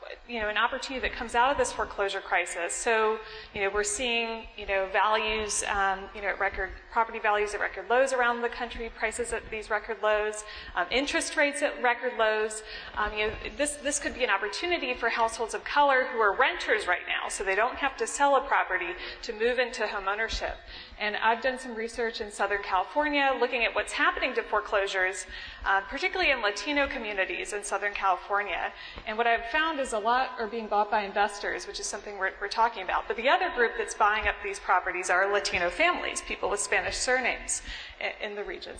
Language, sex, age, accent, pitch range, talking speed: English, female, 30-49, American, 205-255 Hz, 205 wpm